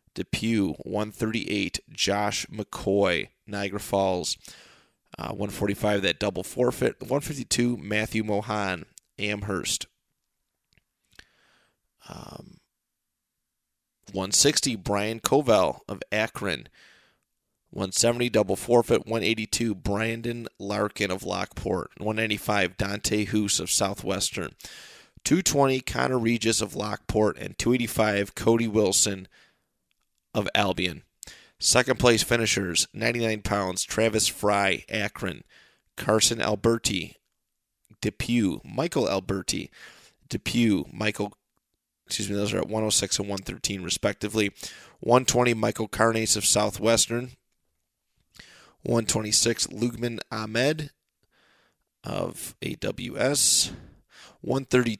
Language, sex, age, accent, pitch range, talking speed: English, male, 30-49, American, 100-115 Hz, 95 wpm